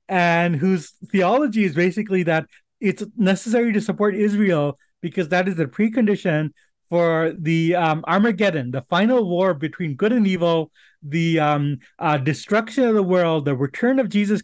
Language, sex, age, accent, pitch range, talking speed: English, male, 30-49, American, 160-210 Hz, 160 wpm